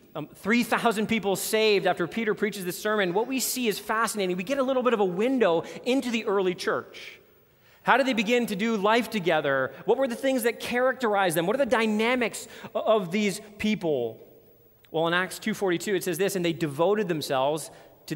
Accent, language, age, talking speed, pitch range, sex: American, English, 30-49, 200 wpm, 175-230 Hz, male